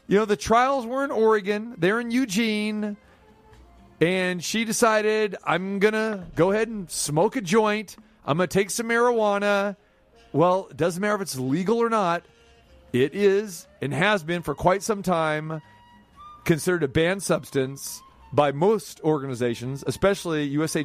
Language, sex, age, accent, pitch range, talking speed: English, male, 40-59, American, 145-195 Hz, 160 wpm